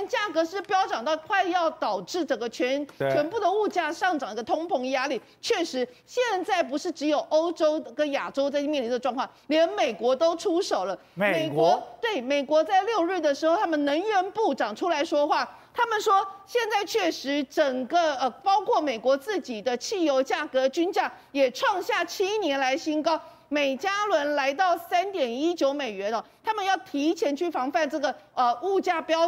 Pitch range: 285-385 Hz